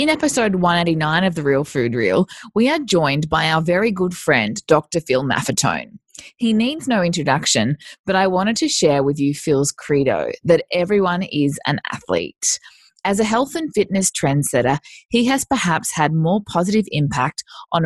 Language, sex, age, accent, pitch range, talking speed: English, female, 20-39, Australian, 150-210 Hz, 170 wpm